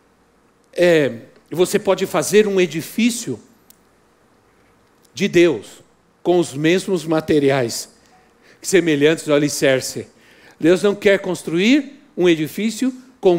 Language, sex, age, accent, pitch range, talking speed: Portuguese, male, 60-79, Brazilian, 180-235 Hz, 95 wpm